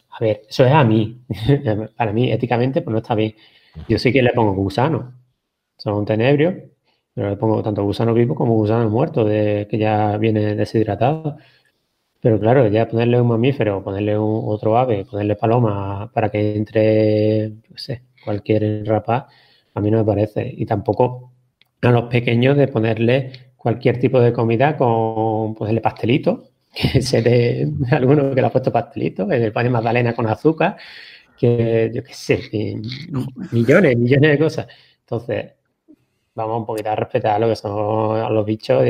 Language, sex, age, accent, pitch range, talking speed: Spanish, male, 30-49, Spanish, 110-125 Hz, 165 wpm